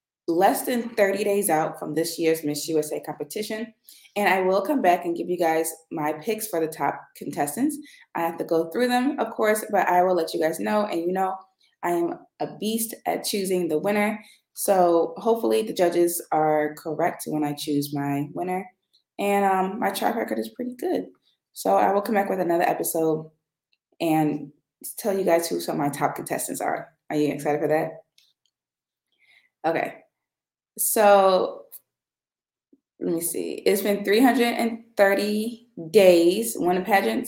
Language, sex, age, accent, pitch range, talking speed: English, female, 20-39, American, 160-205 Hz, 170 wpm